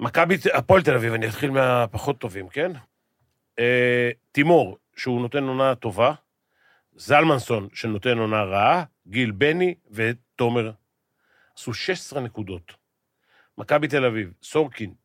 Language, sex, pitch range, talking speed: Hebrew, male, 120-160 Hz, 115 wpm